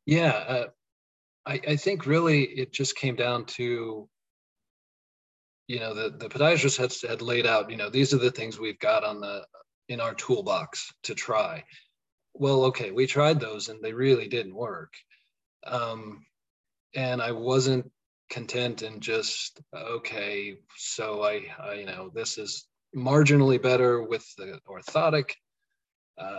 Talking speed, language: 150 wpm, English